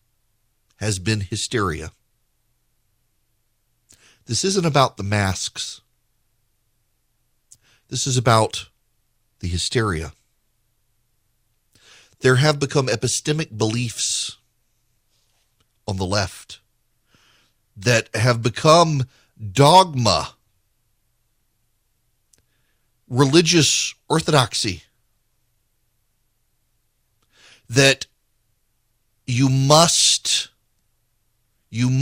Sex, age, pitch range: male, 50-69, 110-125 Hz